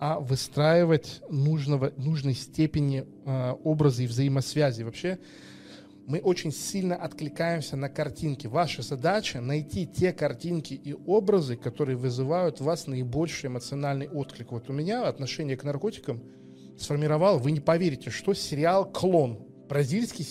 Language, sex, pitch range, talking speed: Russian, male, 130-165 Hz, 125 wpm